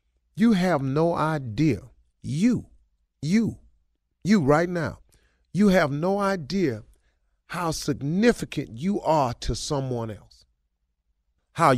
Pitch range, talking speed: 95-145 Hz, 105 wpm